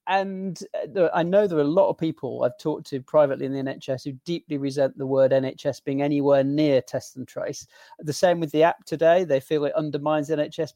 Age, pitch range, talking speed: 40-59, 145-190 Hz, 225 wpm